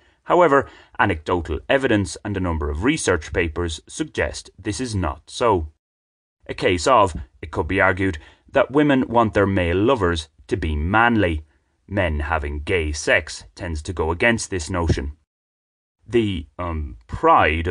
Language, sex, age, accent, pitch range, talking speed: English, male, 30-49, British, 80-105 Hz, 145 wpm